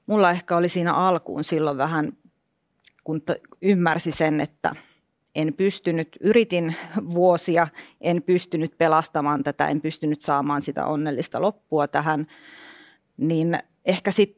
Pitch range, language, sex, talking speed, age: 160-200 Hz, Finnish, female, 120 wpm, 30-49